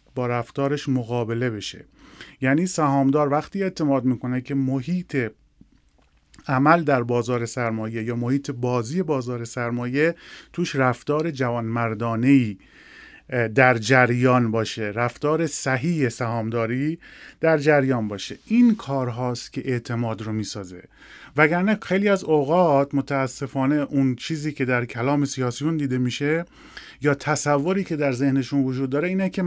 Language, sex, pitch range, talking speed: Persian, male, 125-150 Hz, 125 wpm